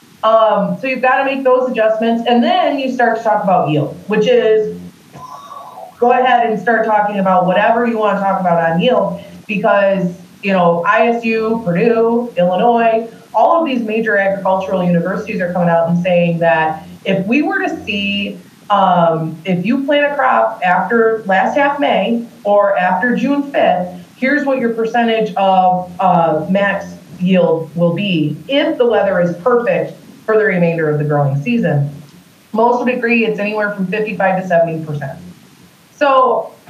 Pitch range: 180-250 Hz